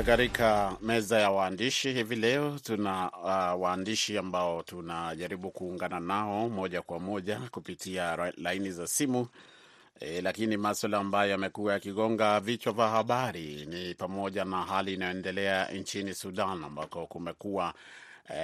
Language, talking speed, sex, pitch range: Swahili, 125 wpm, male, 90-110 Hz